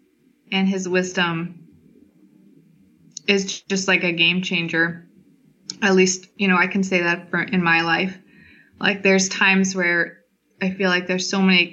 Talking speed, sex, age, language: 160 wpm, female, 20-39, English